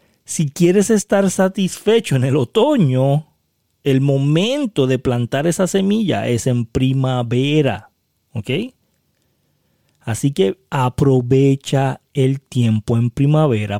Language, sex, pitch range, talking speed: Spanish, male, 120-170 Hz, 105 wpm